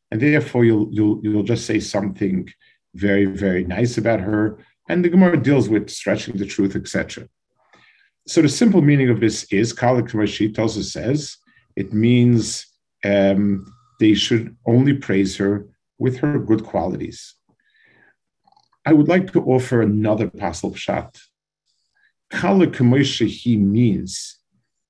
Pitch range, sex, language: 105-145 Hz, male, English